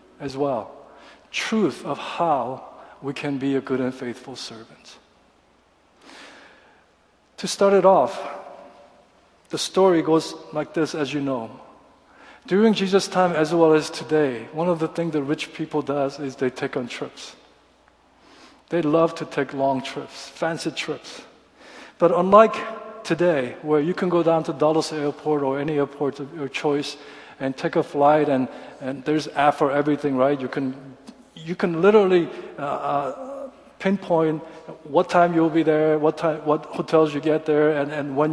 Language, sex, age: Korean, male, 50-69